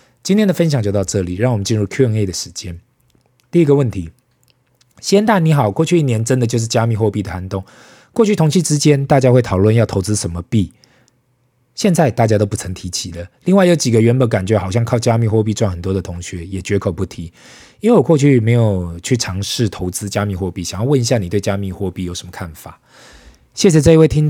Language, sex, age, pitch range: Chinese, male, 20-39, 95-125 Hz